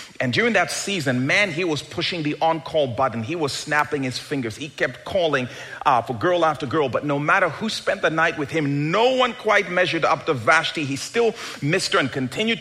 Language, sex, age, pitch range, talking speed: English, male, 40-59, 135-210 Hz, 220 wpm